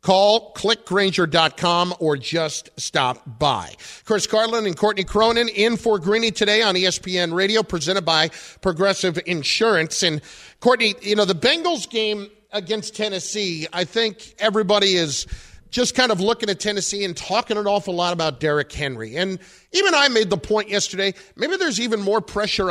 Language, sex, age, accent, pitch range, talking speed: English, male, 50-69, American, 170-215 Hz, 160 wpm